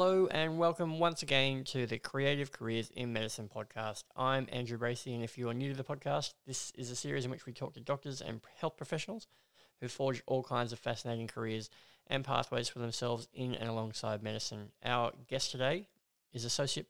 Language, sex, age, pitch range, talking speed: English, male, 20-39, 115-130 Hz, 200 wpm